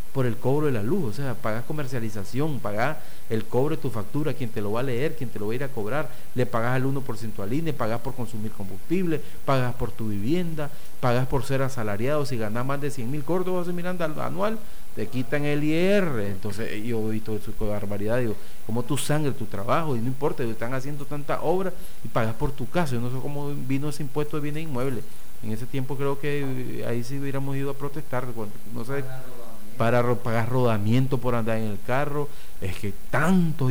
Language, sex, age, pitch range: Spanish, male, 40-59, 115-155 Hz